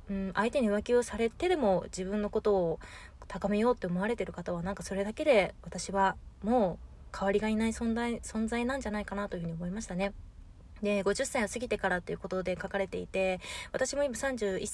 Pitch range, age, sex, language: 190-245 Hz, 20-39, female, Japanese